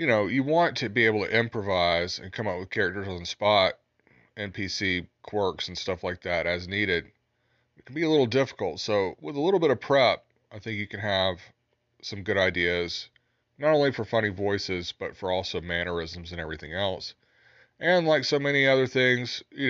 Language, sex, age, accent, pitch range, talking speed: English, male, 30-49, American, 100-120 Hz, 200 wpm